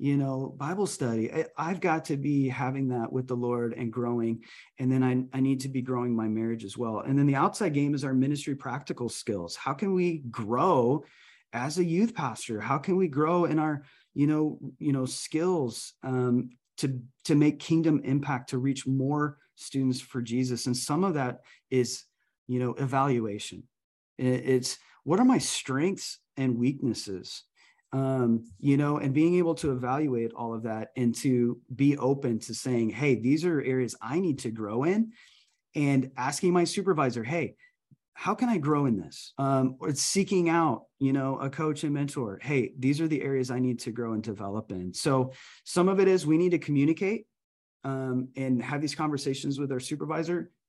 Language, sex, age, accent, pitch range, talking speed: English, male, 30-49, American, 125-155 Hz, 190 wpm